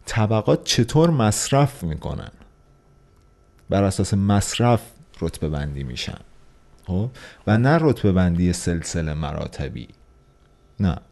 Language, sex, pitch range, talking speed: Persian, male, 80-110 Hz, 90 wpm